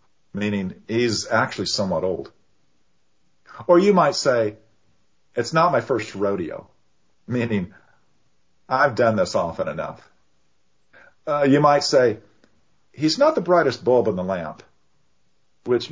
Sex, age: male, 50-69